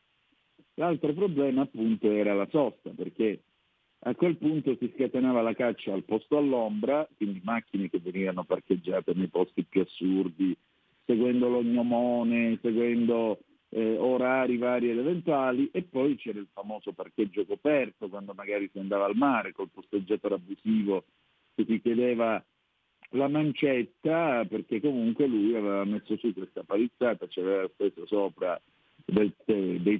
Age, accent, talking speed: 50-69, native, 135 wpm